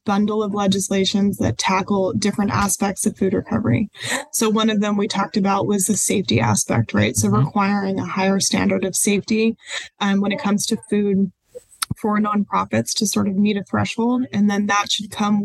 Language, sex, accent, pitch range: English, female, American, 195-220 Hz